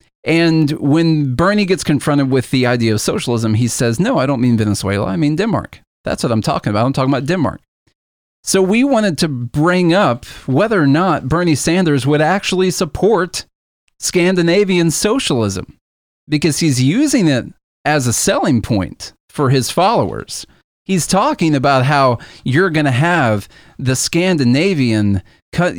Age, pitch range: 40-59, 120-170 Hz